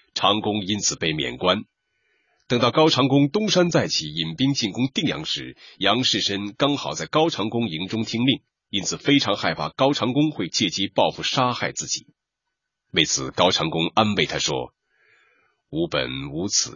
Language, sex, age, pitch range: Chinese, male, 30-49, 95-140 Hz